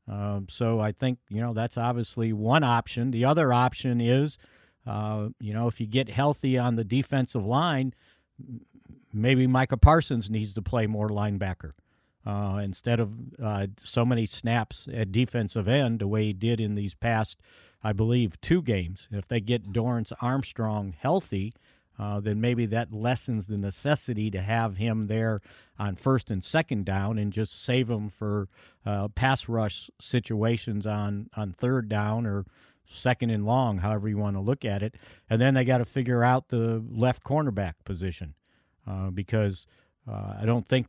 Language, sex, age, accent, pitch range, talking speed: English, male, 50-69, American, 105-125 Hz, 170 wpm